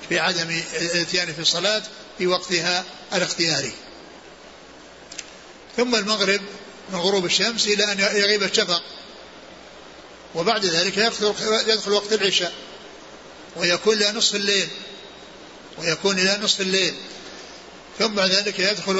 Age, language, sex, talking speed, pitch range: 60-79, Arabic, male, 105 wpm, 175-200 Hz